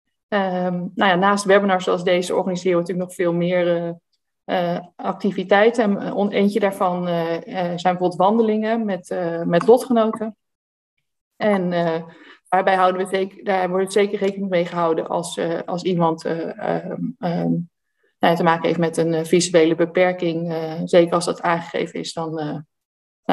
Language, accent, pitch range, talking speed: Dutch, Dutch, 175-205 Hz, 170 wpm